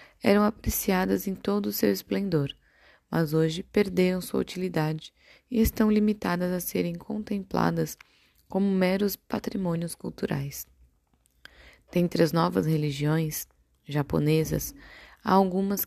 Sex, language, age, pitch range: female, Portuguese, 20-39, 145-185 Hz